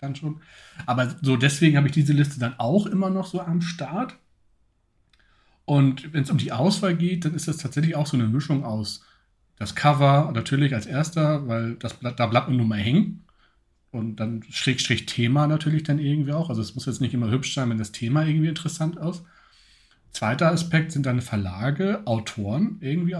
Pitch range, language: 115-145 Hz, German